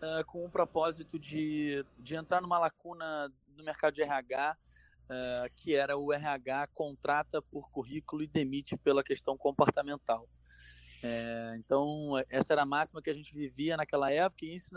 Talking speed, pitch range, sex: 150 wpm, 130-160 Hz, male